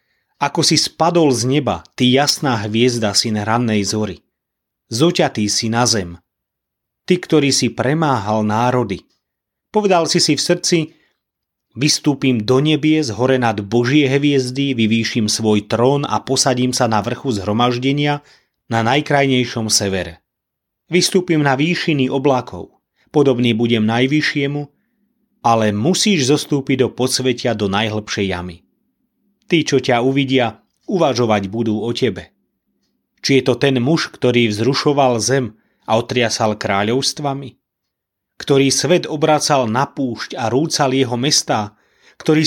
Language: Slovak